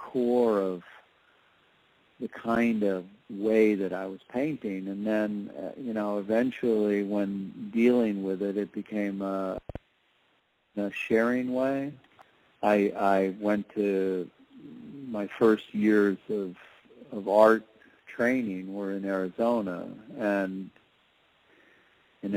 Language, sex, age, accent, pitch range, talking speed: English, male, 50-69, American, 95-110 Hz, 110 wpm